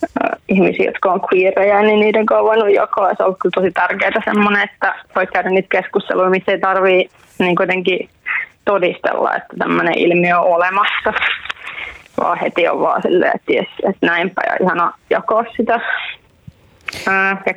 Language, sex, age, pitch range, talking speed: Finnish, female, 20-39, 185-220 Hz, 150 wpm